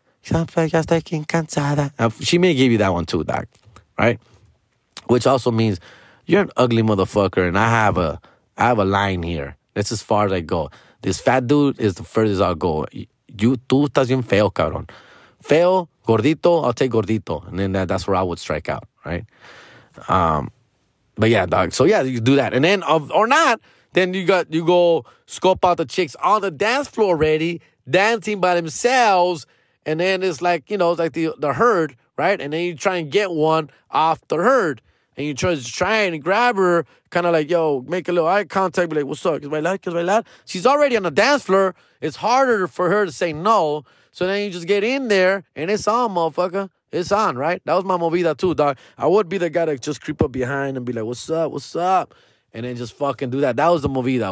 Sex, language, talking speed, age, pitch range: male, English, 220 wpm, 30-49, 115-180 Hz